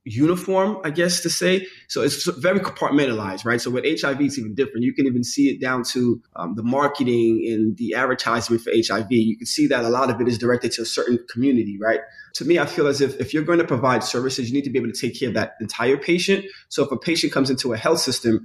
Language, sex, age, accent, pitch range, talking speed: English, male, 20-39, American, 115-140 Hz, 255 wpm